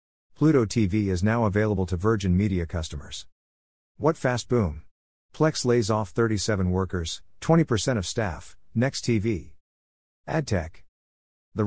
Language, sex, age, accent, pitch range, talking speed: English, male, 50-69, American, 90-115 Hz, 125 wpm